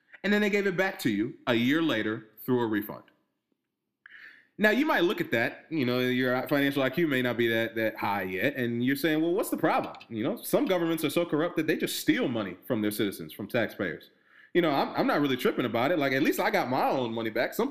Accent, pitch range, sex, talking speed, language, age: American, 120-175 Hz, male, 255 wpm, English, 20-39